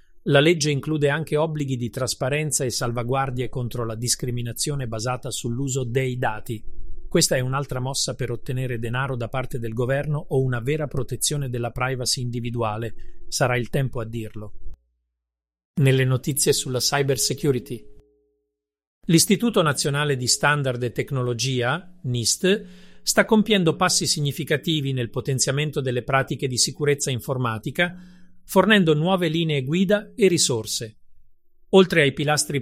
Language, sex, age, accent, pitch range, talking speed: Italian, male, 40-59, native, 125-155 Hz, 130 wpm